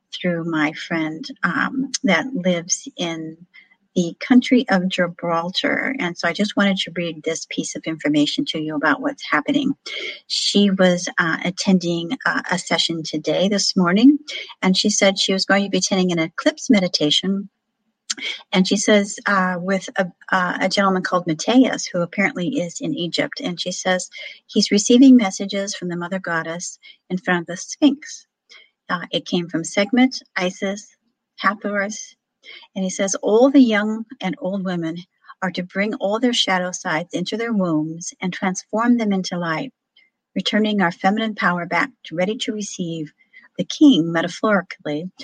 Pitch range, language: 170-230 Hz, English